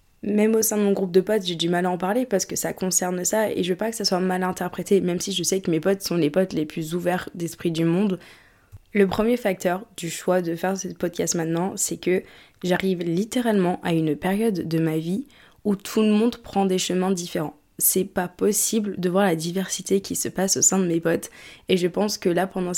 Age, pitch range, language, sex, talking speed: 20-39, 175-200 Hz, French, female, 245 wpm